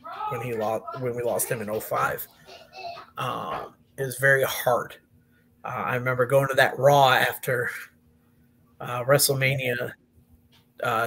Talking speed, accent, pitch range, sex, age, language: 135 wpm, American, 130-165 Hz, male, 30-49, English